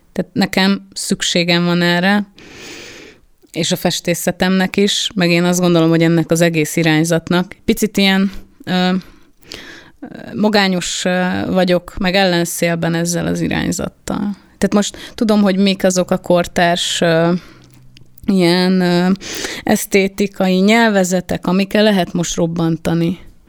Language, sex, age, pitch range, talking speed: Hungarian, female, 30-49, 170-200 Hz, 115 wpm